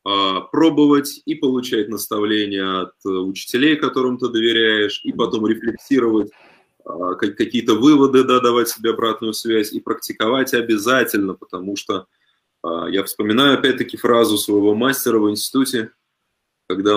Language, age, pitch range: Russian, 20-39, 110-140 Hz